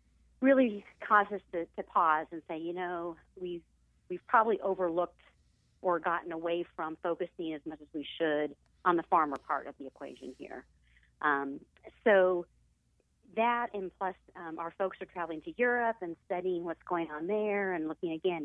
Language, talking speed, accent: English, 170 wpm, American